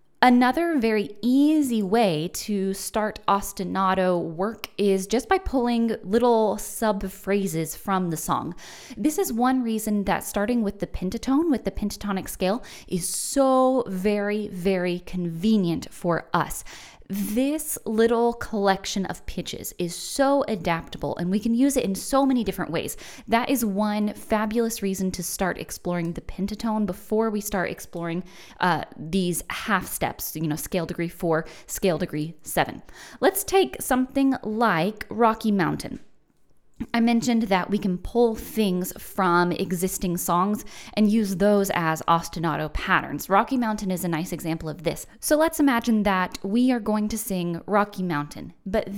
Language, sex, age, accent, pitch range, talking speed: English, female, 20-39, American, 185-235 Hz, 150 wpm